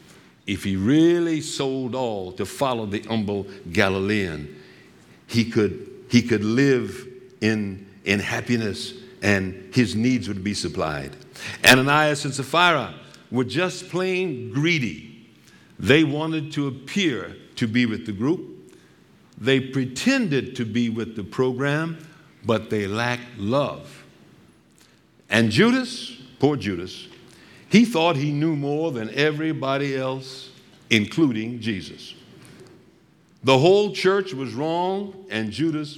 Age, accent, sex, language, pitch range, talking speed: 60-79, American, male, English, 115-160 Hz, 120 wpm